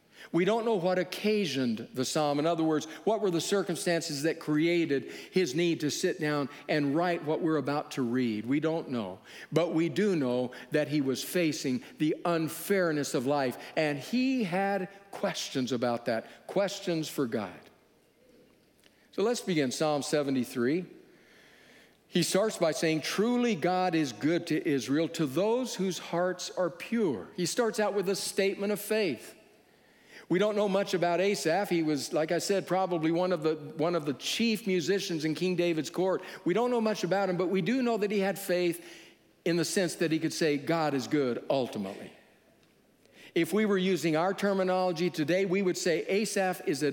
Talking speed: 180 wpm